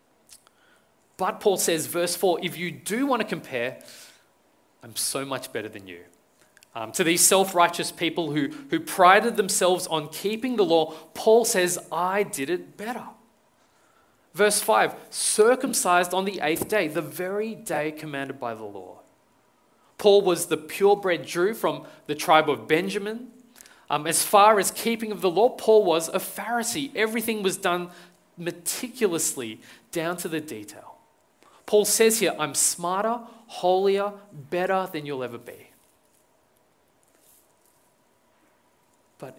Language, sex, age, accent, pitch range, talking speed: English, male, 20-39, Australian, 165-220 Hz, 140 wpm